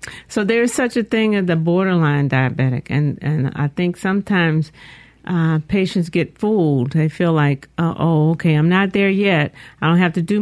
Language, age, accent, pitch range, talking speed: English, 50-69, American, 150-185 Hz, 185 wpm